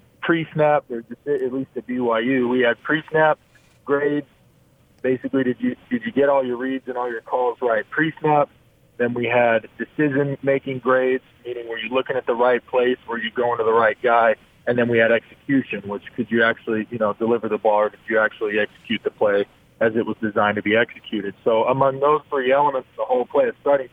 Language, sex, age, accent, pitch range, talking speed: English, male, 40-59, American, 115-140 Hz, 210 wpm